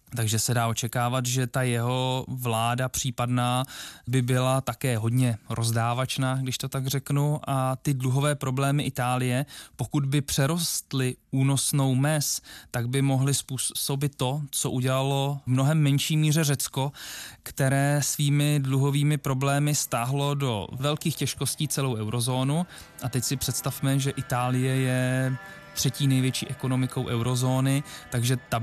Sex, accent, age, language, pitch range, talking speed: male, native, 20-39, Czech, 125-145 Hz, 130 wpm